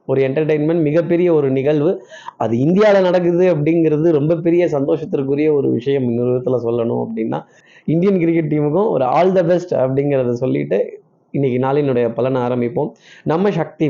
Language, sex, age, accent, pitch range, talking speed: Tamil, male, 20-39, native, 130-160 Hz, 115 wpm